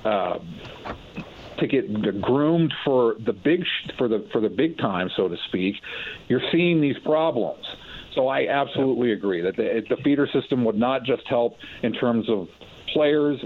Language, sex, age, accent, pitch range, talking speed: English, male, 50-69, American, 110-140 Hz, 160 wpm